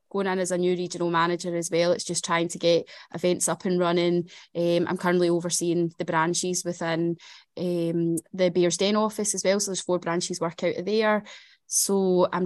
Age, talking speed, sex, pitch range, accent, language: 20-39, 200 wpm, female, 175-195 Hz, British, English